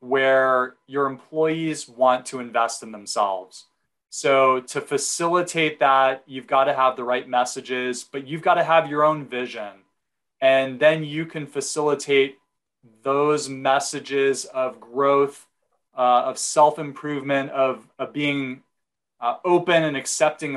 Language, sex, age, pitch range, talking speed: English, male, 20-39, 130-150 Hz, 135 wpm